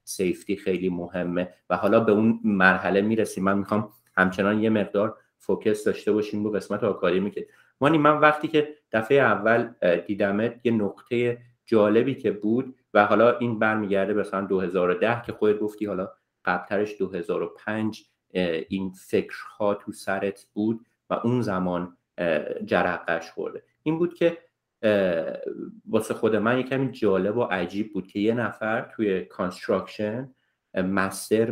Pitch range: 95-120 Hz